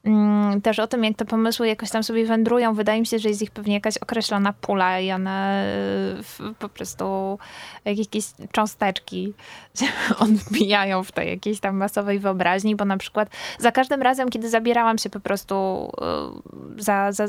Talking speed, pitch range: 160 wpm, 190-225 Hz